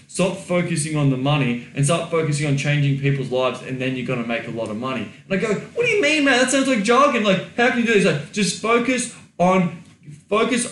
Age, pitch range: 20-39, 130-155 Hz